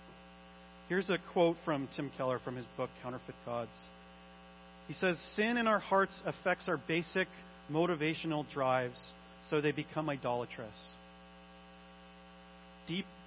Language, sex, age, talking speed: English, male, 40-59, 120 wpm